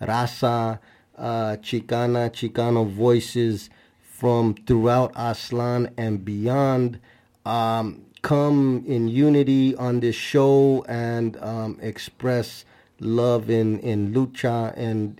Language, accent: English, American